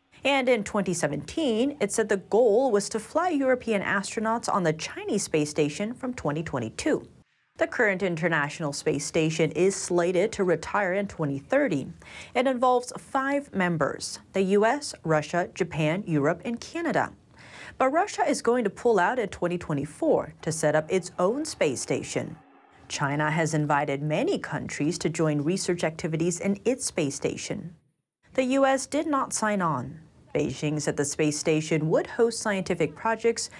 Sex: female